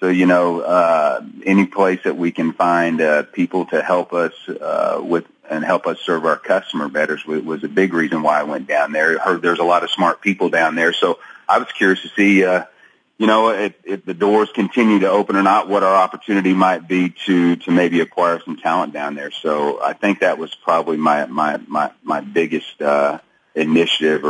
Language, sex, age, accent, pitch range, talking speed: English, male, 40-59, American, 75-95 Hz, 220 wpm